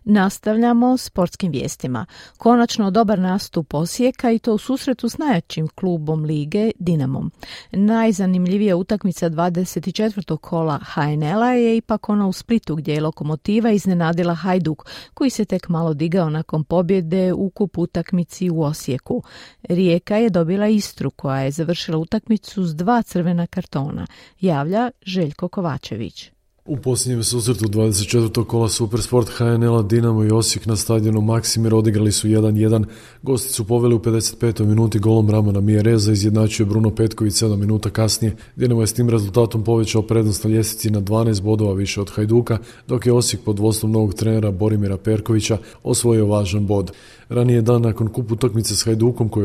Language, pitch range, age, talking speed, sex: Croatian, 110-180 Hz, 40-59, 150 wpm, female